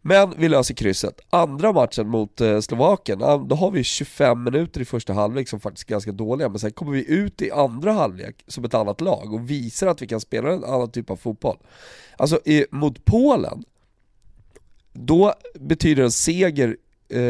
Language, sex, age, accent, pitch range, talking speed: Swedish, male, 30-49, native, 120-165 Hz, 175 wpm